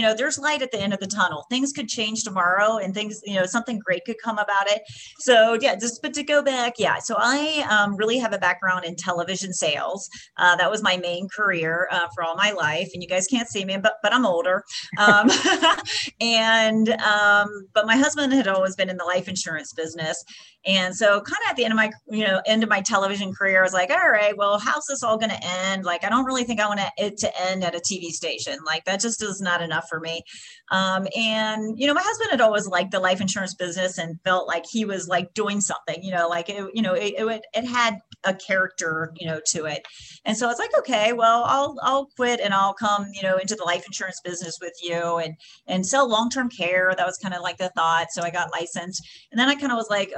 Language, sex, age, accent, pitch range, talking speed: English, female, 30-49, American, 180-225 Hz, 250 wpm